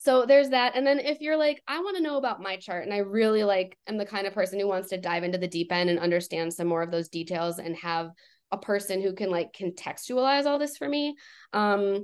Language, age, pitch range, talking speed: English, 20-39, 180-225 Hz, 260 wpm